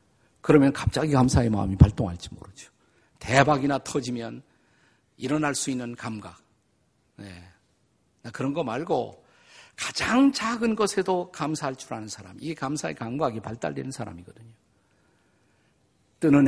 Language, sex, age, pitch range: Korean, male, 50-69, 115-180 Hz